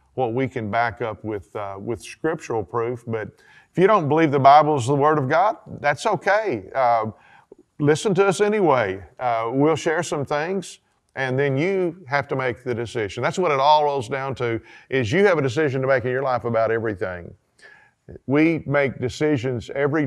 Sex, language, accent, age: male, English, American, 40-59